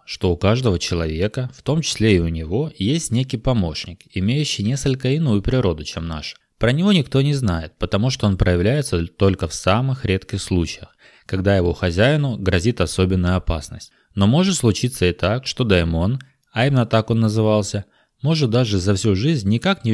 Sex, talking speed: male, 175 wpm